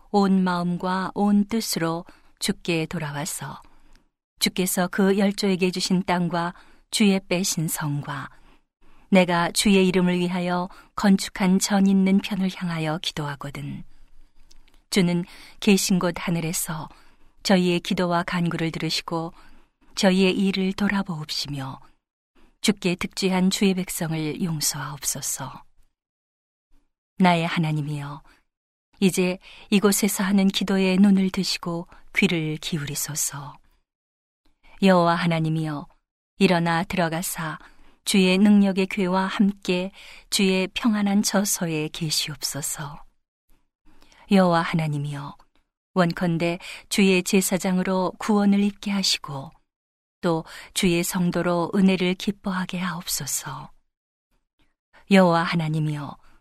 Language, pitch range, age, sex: Korean, 165-195 Hz, 40-59, female